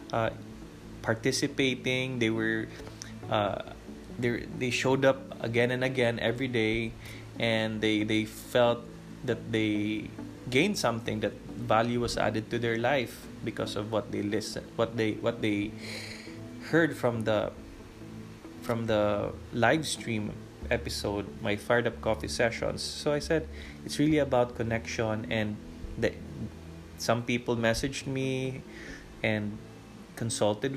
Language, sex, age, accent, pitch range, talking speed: English, male, 20-39, Filipino, 110-130 Hz, 130 wpm